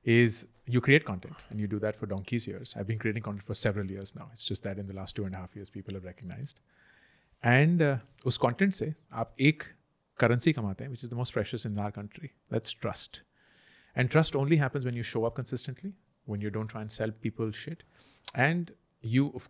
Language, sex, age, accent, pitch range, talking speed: Hindi, male, 30-49, native, 105-130 Hz, 220 wpm